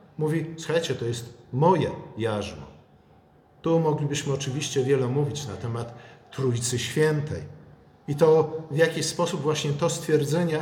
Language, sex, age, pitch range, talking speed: Polish, male, 50-69, 125-160 Hz, 130 wpm